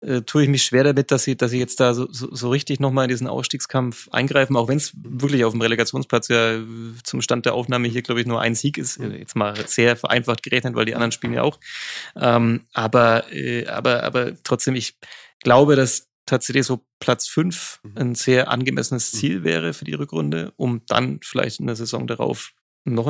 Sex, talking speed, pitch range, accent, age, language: male, 205 wpm, 115-130 Hz, German, 30-49, German